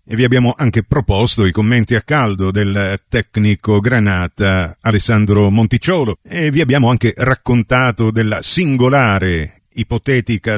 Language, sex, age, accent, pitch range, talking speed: Italian, male, 40-59, native, 100-125 Hz, 120 wpm